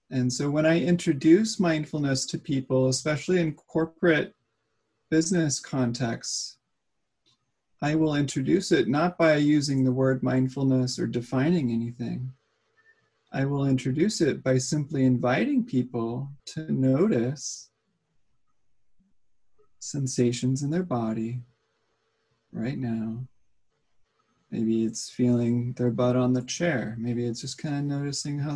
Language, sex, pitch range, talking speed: English, male, 120-150 Hz, 120 wpm